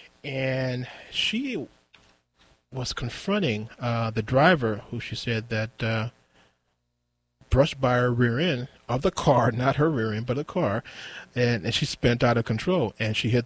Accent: American